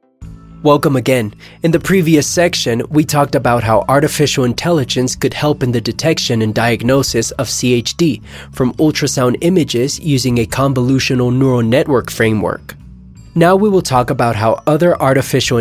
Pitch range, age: 120-155 Hz, 20-39